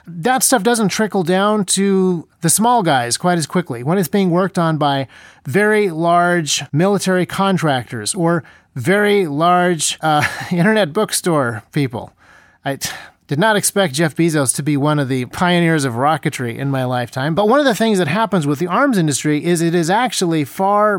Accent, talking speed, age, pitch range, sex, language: American, 175 wpm, 30-49, 150-195 Hz, male, English